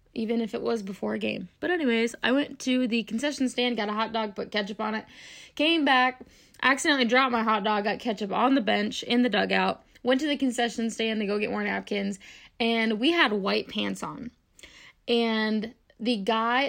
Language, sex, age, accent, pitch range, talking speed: English, female, 20-39, American, 210-250 Hz, 205 wpm